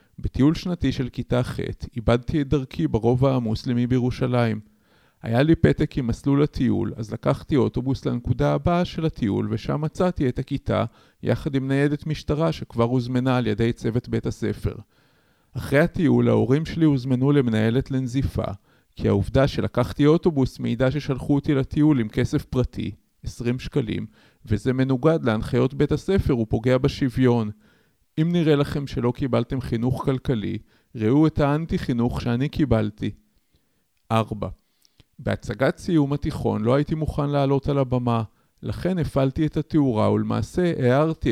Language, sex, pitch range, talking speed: Hebrew, male, 115-140 Hz, 135 wpm